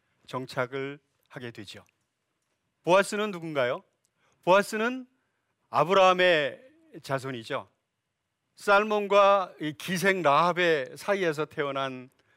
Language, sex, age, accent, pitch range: Korean, male, 40-59, native, 130-195 Hz